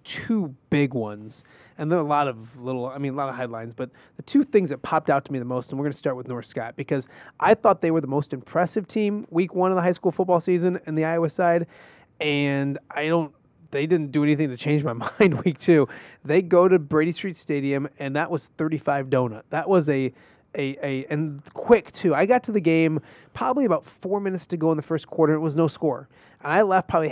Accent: American